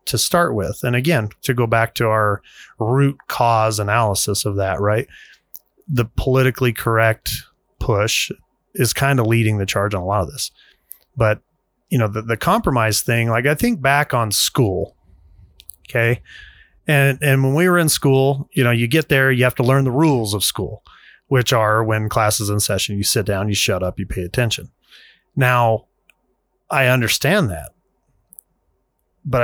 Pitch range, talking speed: 110-135 Hz, 175 wpm